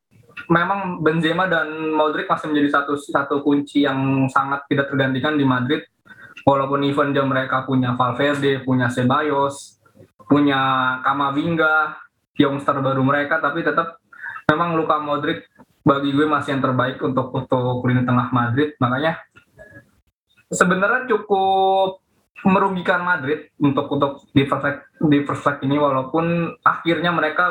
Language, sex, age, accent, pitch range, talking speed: English, male, 20-39, Indonesian, 135-155 Hz, 120 wpm